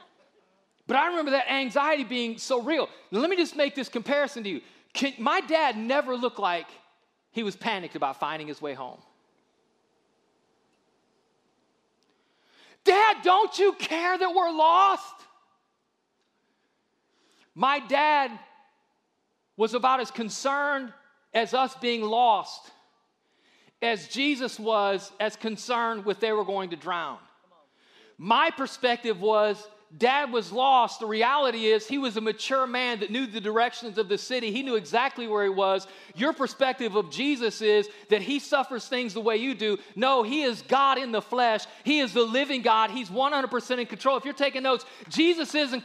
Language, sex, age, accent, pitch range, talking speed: English, male, 40-59, American, 225-290 Hz, 155 wpm